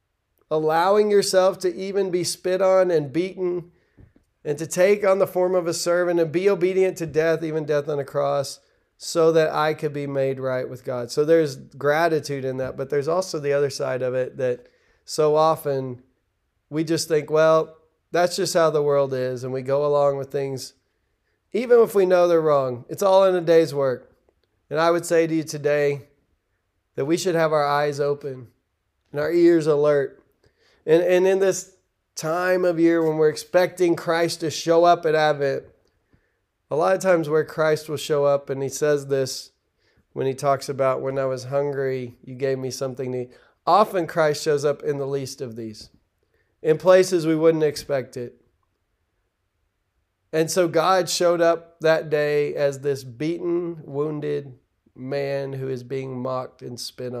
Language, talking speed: English, 185 wpm